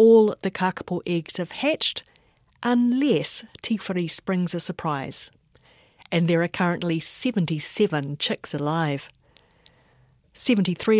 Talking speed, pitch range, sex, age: 105 wpm, 165-210 Hz, female, 40-59